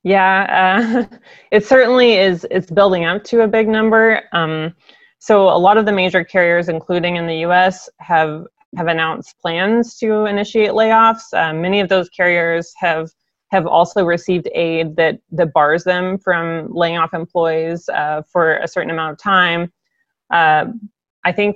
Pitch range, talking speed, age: 160-190 Hz, 165 wpm, 20-39